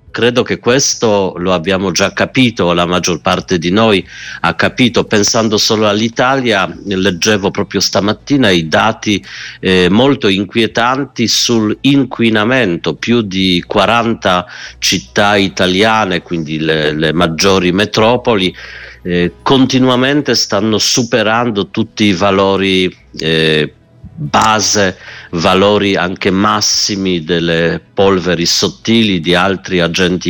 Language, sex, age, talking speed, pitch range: Italian, male, 50-69, 105 wpm, 90-110 Hz